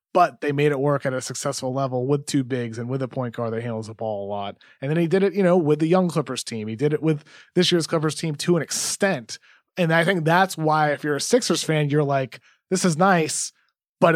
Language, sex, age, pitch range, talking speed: English, male, 30-49, 140-165 Hz, 265 wpm